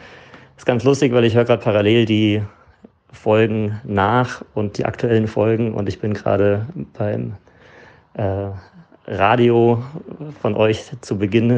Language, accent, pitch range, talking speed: German, German, 105-120 Hz, 140 wpm